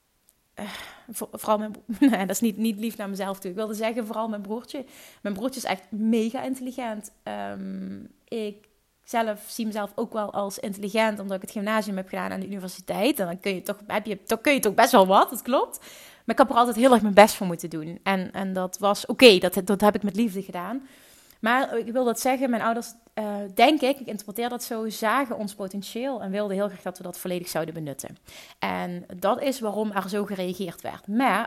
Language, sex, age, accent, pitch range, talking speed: Dutch, female, 30-49, Dutch, 200-250 Hz, 225 wpm